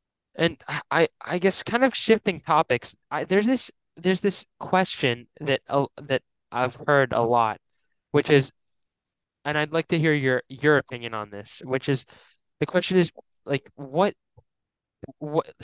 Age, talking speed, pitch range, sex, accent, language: 20-39, 155 wpm, 120-150 Hz, male, American, English